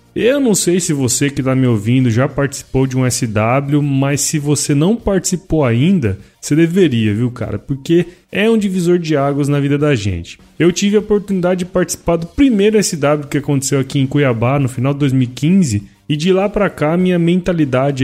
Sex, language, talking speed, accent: male, Portuguese, 195 wpm, Brazilian